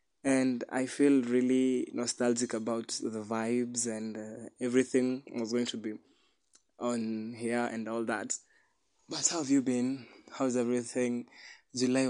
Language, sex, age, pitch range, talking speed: English, male, 20-39, 115-135 Hz, 140 wpm